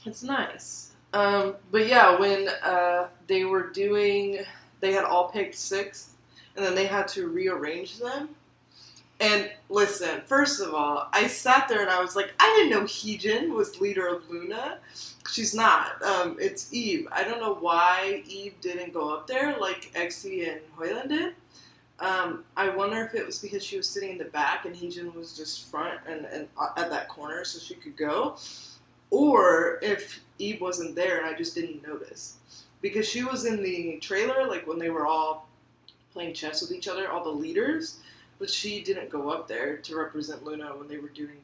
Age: 20-39